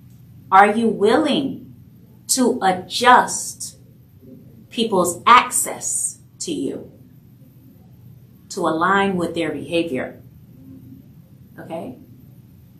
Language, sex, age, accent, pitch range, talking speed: English, female, 30-49, American, 155-210 Hz, 70 wpm